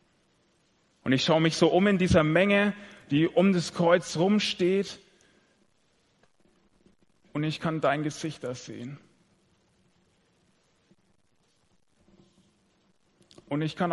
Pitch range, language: 140-180 Hz, German